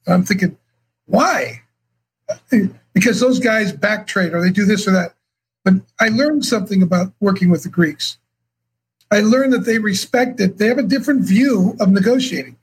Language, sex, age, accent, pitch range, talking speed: English, male, 50-69, American, 190-230 Hz, 165 wpm